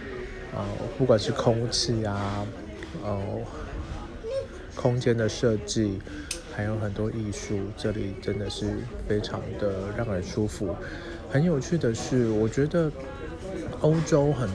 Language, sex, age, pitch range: Chinese, male, 20-39, 100-120 Hz